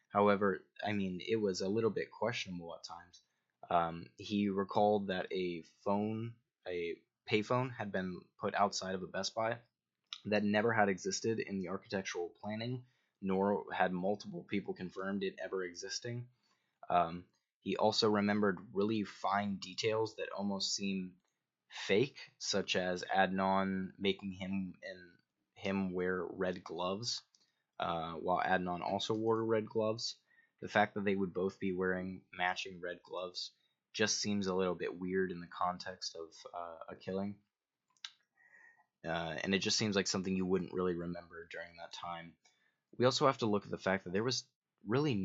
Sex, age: male, 20-39